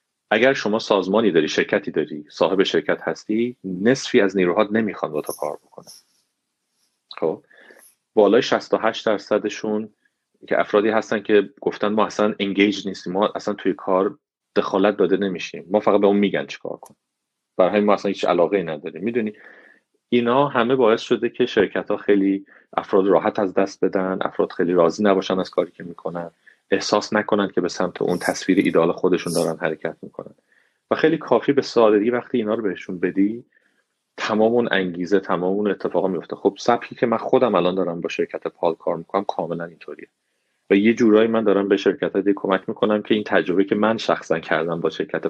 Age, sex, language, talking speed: 40-59, male, Persian, 175 wpm